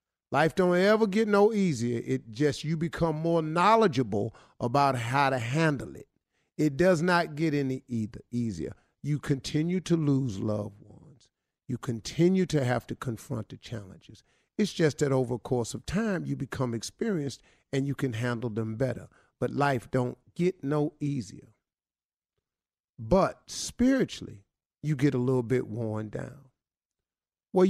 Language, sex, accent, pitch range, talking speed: English, male, American, 115-165 Hz, 150 wpm